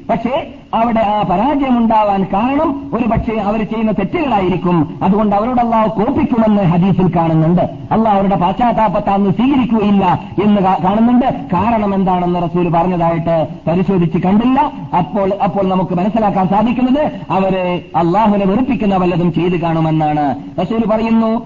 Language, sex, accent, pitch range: Malayalam, male, native, 195-230 Hz